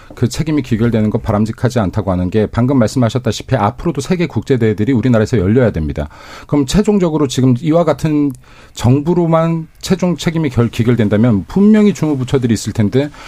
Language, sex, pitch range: Korean, male, 110-160 Hz